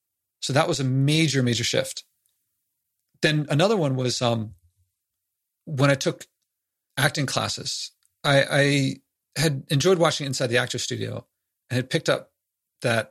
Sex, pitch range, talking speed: male, 120-155 Hz, 140 wpm